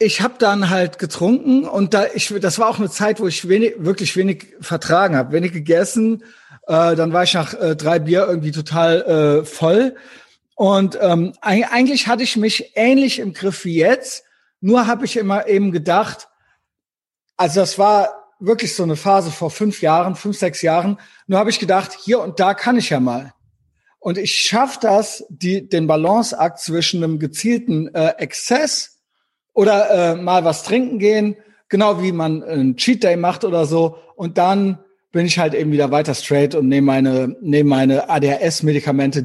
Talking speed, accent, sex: 180 wpm, German, male